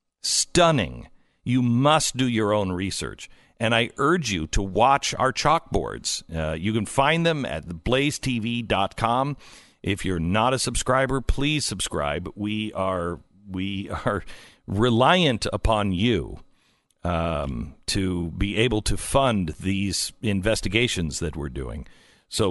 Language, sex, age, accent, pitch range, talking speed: English, male, 50-69, American, 95-125 Hz, 130 wpm